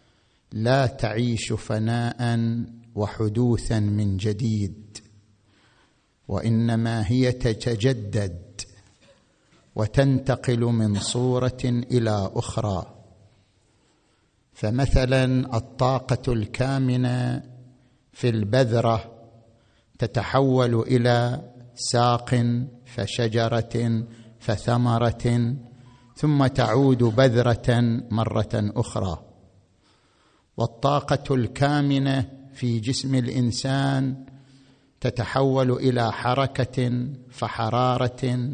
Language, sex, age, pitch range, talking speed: Arabic, male, 50-69, 115-130 Hz, 60 wpm